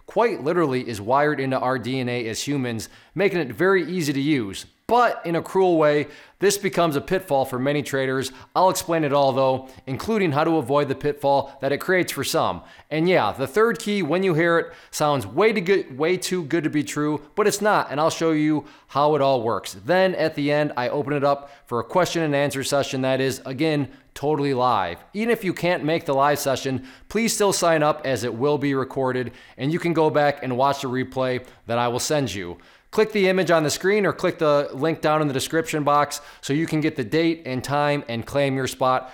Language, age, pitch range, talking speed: English, 20-39, 135-170 Hz, 230 wpm